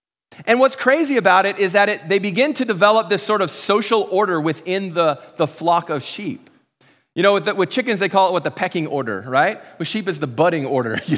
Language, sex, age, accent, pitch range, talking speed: English, male, 30-49, American, 190-250 Hz, 235 wpm